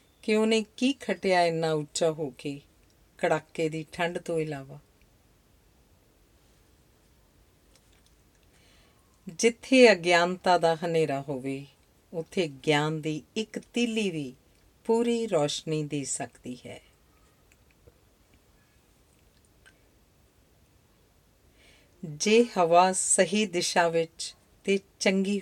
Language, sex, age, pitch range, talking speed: Punjabi, female, 40-59, 110-180 Hz, 85 wpm